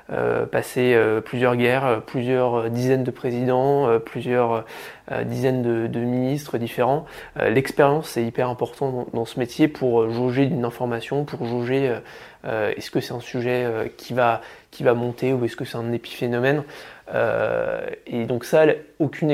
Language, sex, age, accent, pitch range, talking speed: French, male, 20-39, French, 120-140 Hz, 145 wpm